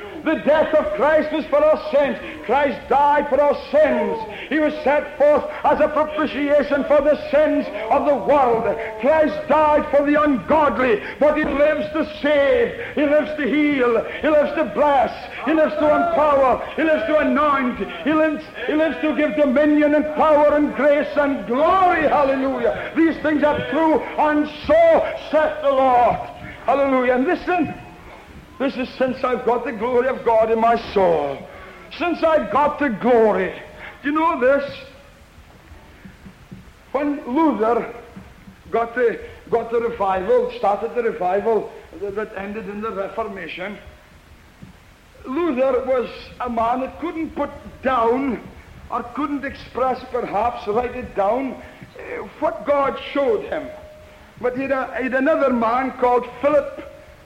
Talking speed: 145 wpm